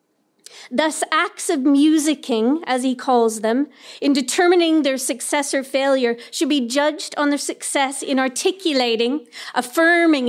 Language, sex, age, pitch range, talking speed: English, female, 40-59, 250-300 Hz, 135 wpm